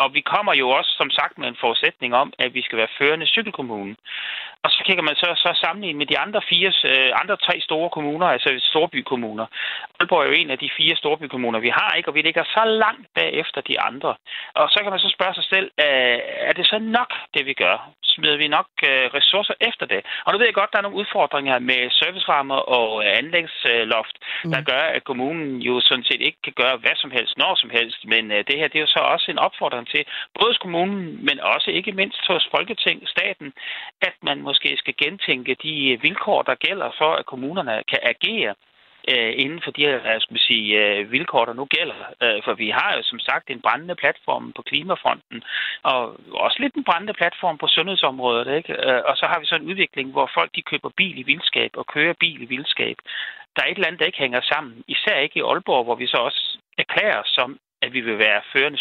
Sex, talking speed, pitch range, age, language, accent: male, 215 wpm, 125-185 Hz, 30-49, Danish, native